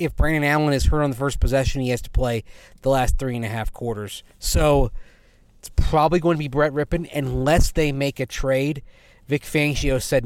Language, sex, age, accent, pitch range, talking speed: English, male, 30-49, American, 120-150 Hz, 210 wpm